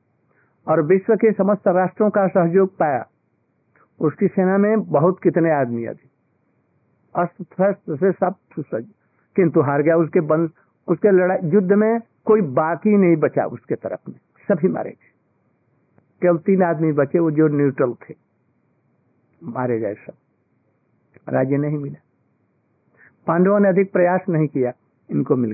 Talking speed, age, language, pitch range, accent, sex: 140 wpm, 60-79, Hindi, 150-195 Hz, native, male